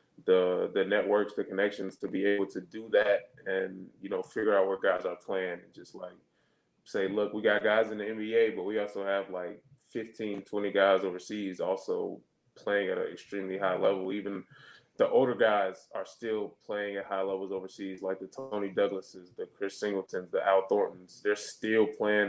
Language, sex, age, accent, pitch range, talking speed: English, male, 20-39, American, 95-115 Hz, 190 wpm